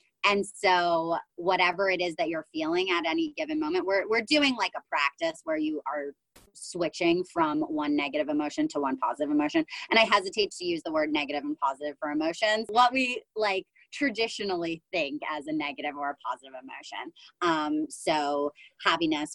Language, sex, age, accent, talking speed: English, female, 20-39, American, 175 wpm